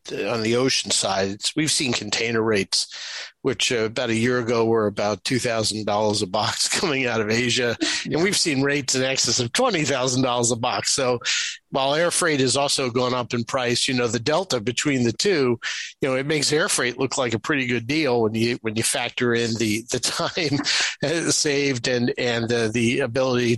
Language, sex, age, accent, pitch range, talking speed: English, male, 50-69, American, 115-130 Hz, 205 wpm